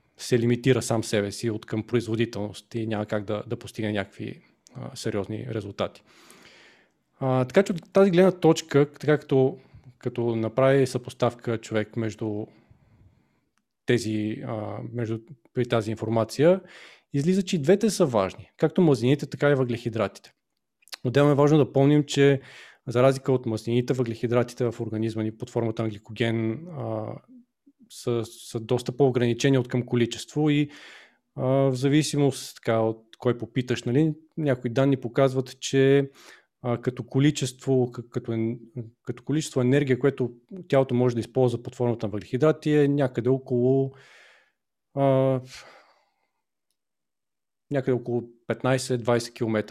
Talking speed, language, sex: 135 wpm, Bulgarian, male